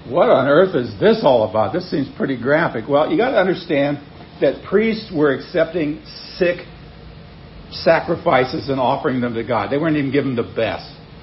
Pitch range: 150-175 Hz